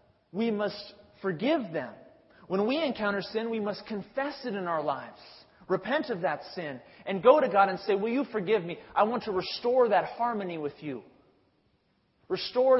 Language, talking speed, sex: English, 180 wpm, male